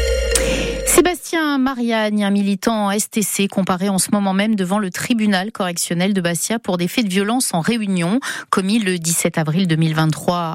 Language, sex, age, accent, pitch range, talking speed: French, female, 40-59, French, 165-200 Hz, 160 wpm